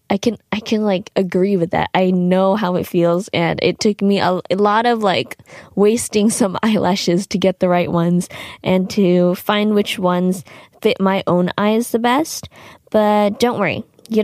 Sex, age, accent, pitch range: female, 20-39, American, 185-230 Hz